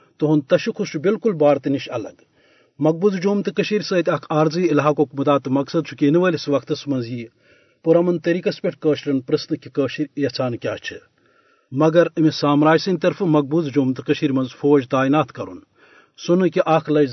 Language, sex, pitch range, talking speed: Urdu, male, 145-170 Hz, 125 wpm